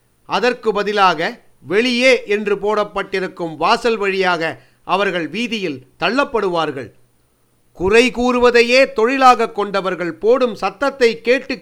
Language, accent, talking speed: Tamil, native, 90 wpm